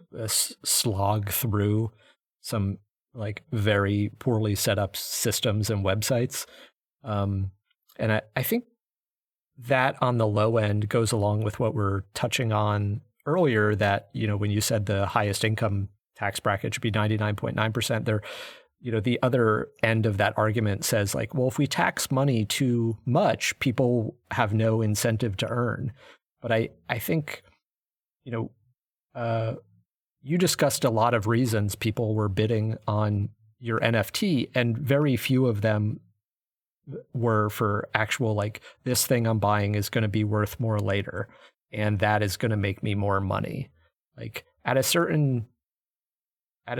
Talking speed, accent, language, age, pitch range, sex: 155 wpm, American, English, 30-49, 105-125 Hz, male